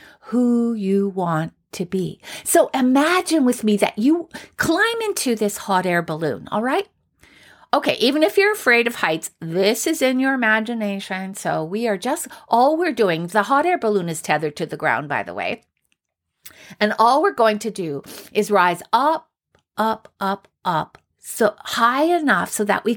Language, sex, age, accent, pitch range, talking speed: English, female, 50-69, American, 190-270 Hz, 180 wpm